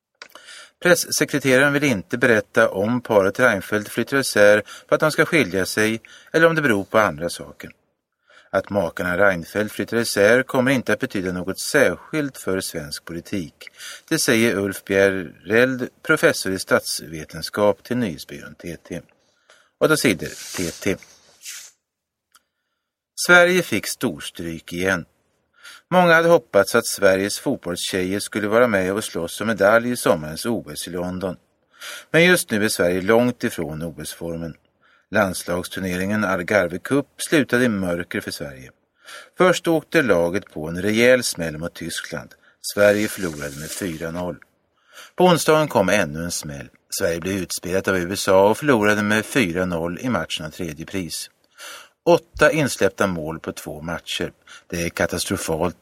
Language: Swedish